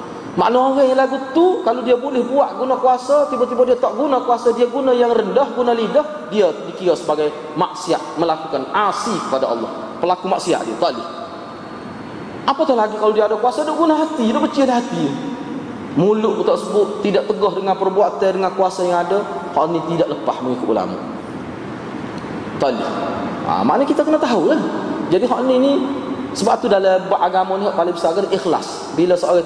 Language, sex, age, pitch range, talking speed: Malay, male, 30-49, 195-270 Hz, 185 wpm